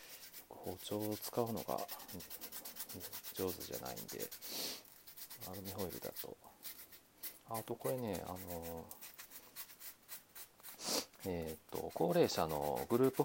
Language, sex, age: Japanese, male, 40-59